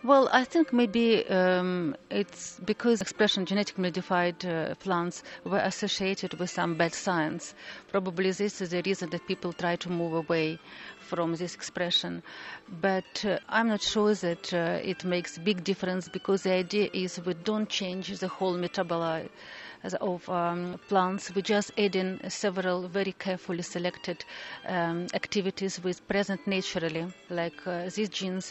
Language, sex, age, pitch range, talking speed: English, female, 40-59, 175-195 Hz, 155 wpm